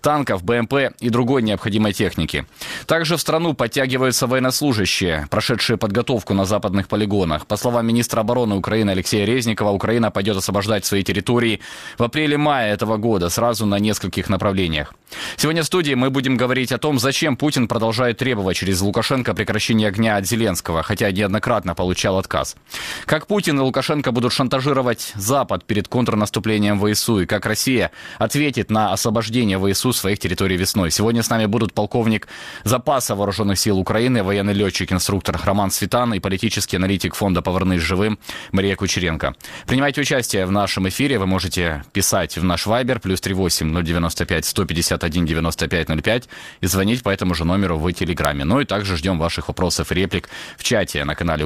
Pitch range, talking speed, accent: 90-120 Hz, 155 wpm, native